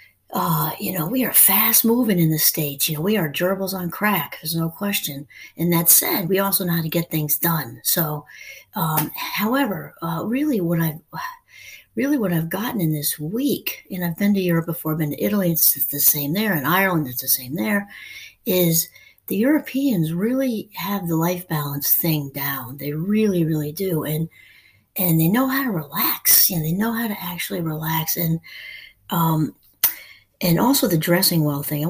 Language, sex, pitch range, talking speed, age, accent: English, female, 160-210 Hz, 195 wpm, 60-79, American